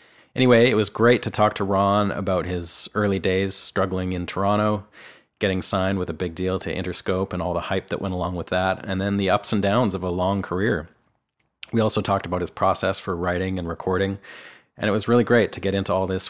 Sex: male